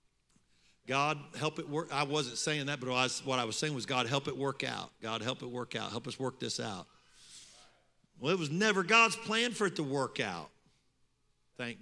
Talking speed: 210 wpm